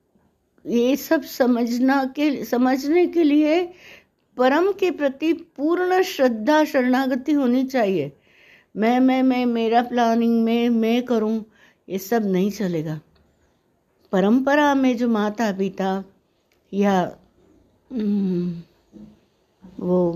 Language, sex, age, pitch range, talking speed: Hindi, female, 60-79, 195-255 Hz, 100 wpm